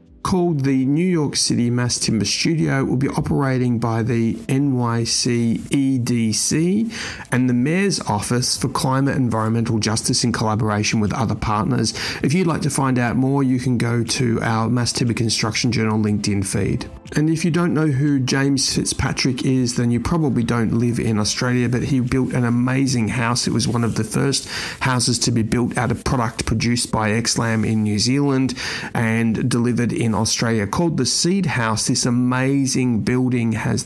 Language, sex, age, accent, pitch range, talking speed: English, male, 40-59, Australian, 115-135 Hz, 175 wpm